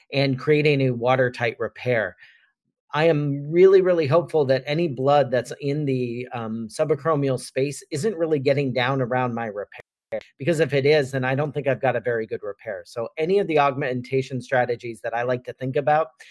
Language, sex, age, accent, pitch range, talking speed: English, male, 40-59, American, 125-145 Hz, 190 wpm